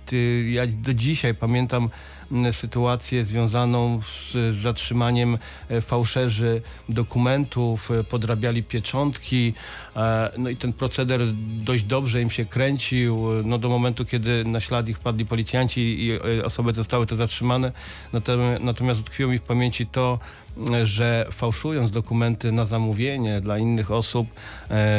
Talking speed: 120 wpm